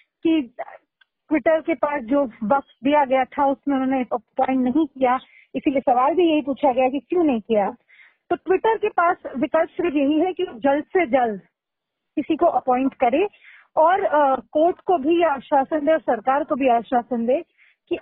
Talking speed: 180 wpm